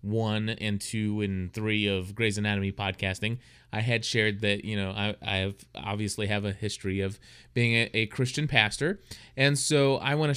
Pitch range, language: 105-125 Hz, English